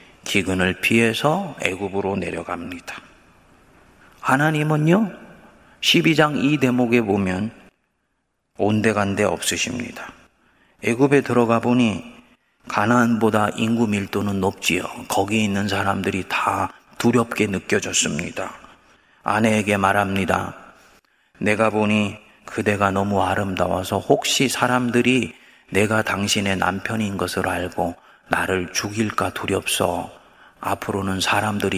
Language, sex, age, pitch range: Korean, male, 30-49, 95-120 Hz